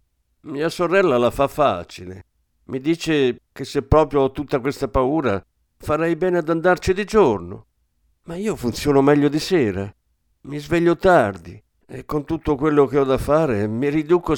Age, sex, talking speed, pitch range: 50-69, male, 165 wpm, 95-150 Hz